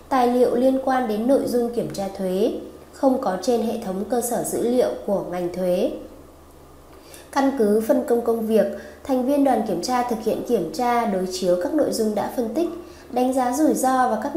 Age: 20-39